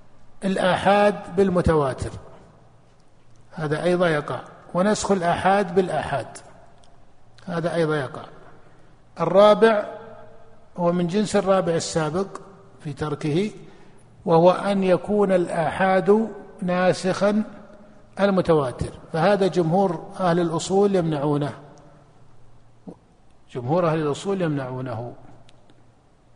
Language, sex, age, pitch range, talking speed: Arabic, male, 50-69, 155-190 Hz, 75 wpm